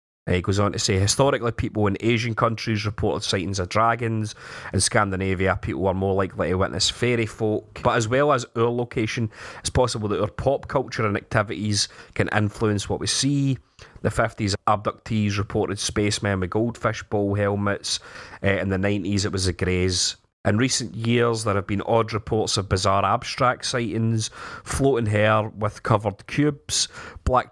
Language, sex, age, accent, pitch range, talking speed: English, male, 30-49, British, 100-115 Hz, 170 wpm